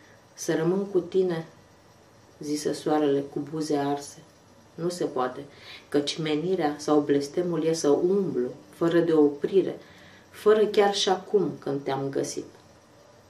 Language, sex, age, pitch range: English, female, 30-49, 150-200 Hz